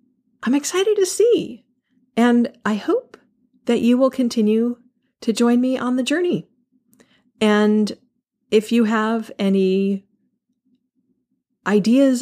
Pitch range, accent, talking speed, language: 215-270 Hz, American, 115 wpm, English